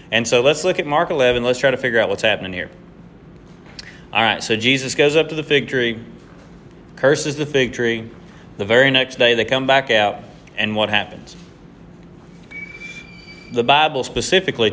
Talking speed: 175 wpm